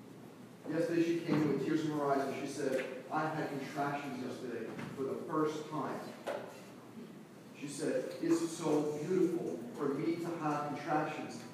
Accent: American